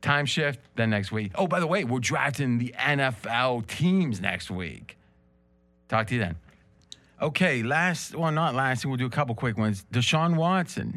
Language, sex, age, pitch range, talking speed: English, male, 30-49, 105-145 Hz, 180 wpm